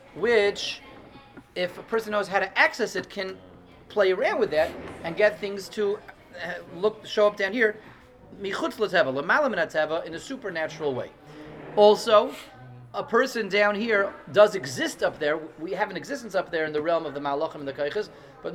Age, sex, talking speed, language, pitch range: 30-49, male, 170 wpm, English, 155-210 Hz